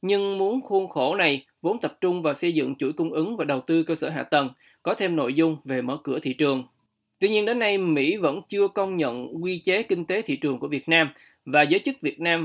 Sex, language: male, Vietnamese